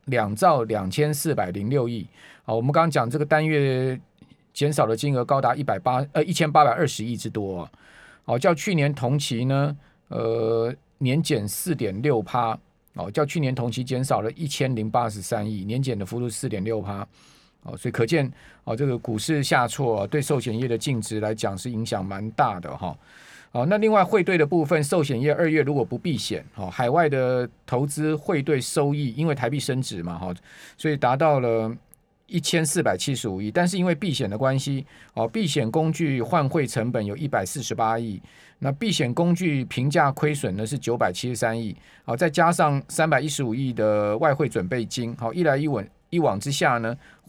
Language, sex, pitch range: Chinese, male, 115-150 Hz